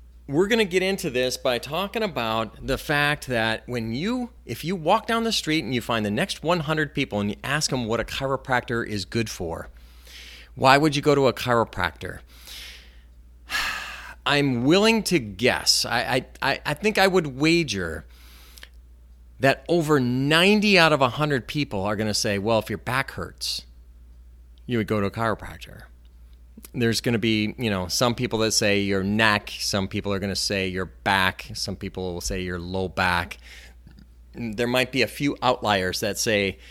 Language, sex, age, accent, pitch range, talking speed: English, male, 40-59, American, 85-135 Hz, 185 wpm